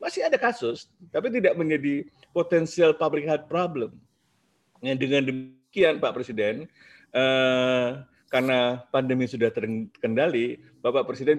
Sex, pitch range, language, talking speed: male, 120-170 Hz, Indonesian, 110 wpm